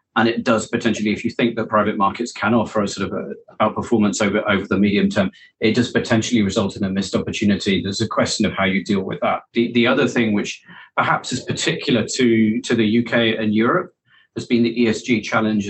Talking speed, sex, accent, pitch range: 220 wpm, male, British, 100-115 Hz